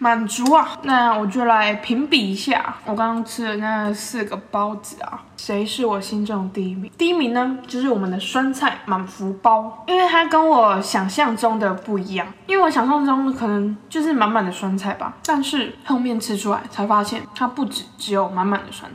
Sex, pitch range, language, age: female, 200-245 Hz, Chinese, 20-39